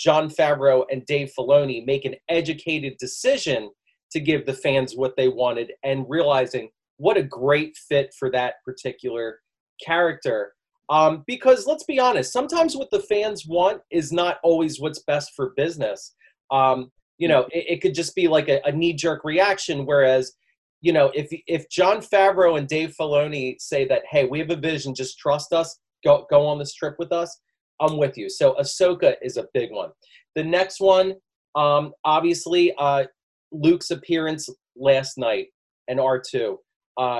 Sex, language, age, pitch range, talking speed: male, English, 30-49, 135-175 Hz, 170 wpm